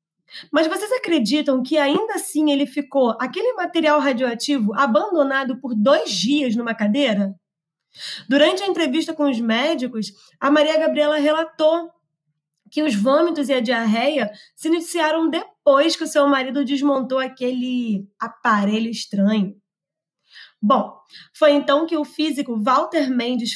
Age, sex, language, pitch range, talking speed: 20-39, female, Portuguese, 235-310 Hz, 130 wpm